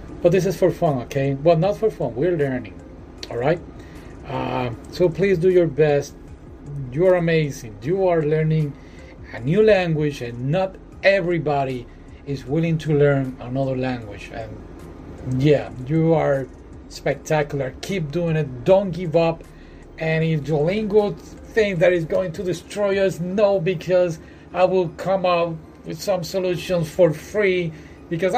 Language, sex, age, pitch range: Japanese, male, 40-59, 145-200 Hz